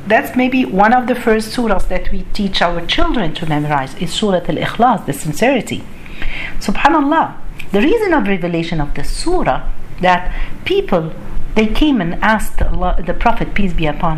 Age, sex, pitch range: 50-69, female, 165-235 Hz